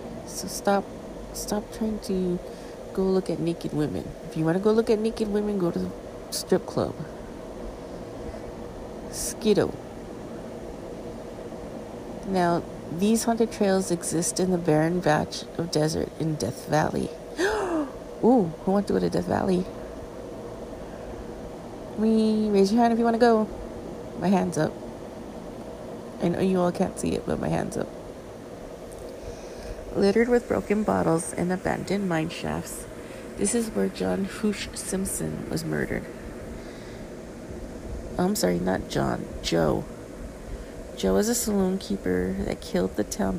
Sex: female